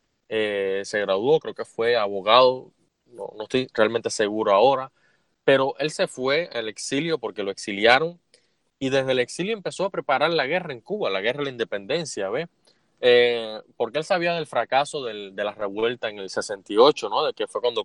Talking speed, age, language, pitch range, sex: 190 wpm, 20-39, Spanish, 110-170 Hz, male